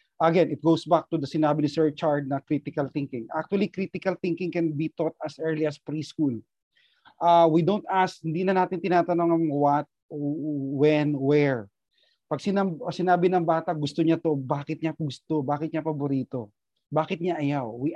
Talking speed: 175 wpm